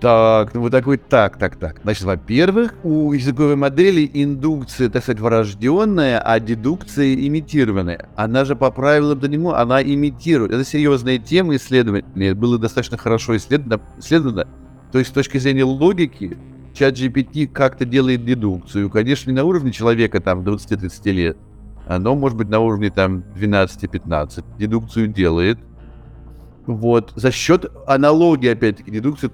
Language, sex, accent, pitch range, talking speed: Russian, male, native, 105-140 Hz, 140 wpm